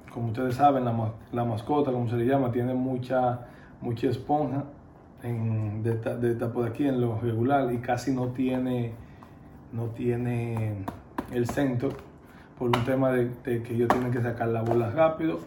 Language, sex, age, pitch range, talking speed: Spanish, male, 20-39, 115-130 Hz, 180 wpm